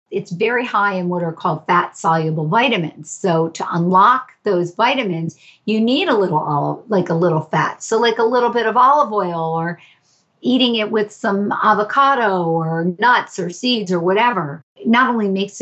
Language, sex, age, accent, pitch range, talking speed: English, female, 50-69, American, 165-220 Hz, 185 wpm